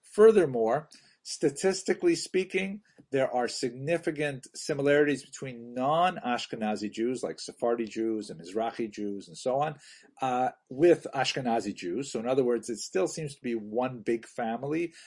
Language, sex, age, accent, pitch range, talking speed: English, male, 50-69, American, 115-150 Hz, 145 wpm